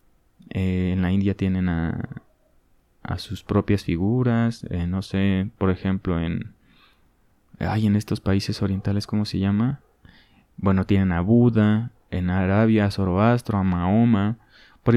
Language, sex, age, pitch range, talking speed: Spanish, male, 20-39, 95-115 Hz, 140 wpm